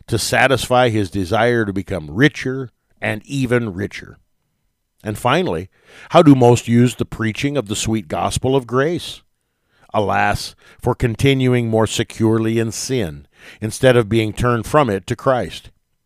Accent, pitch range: American, 105-130 Hz